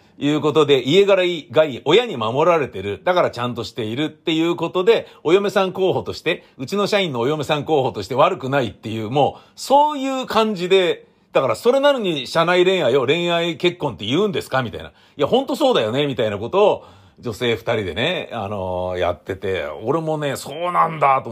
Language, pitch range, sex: Japanese, 120-175 Hz, male